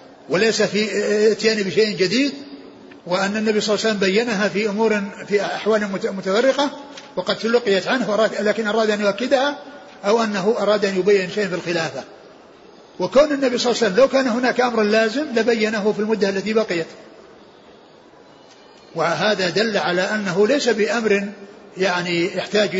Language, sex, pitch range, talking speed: Arabic, male, 180-220 Hz, 145 wpm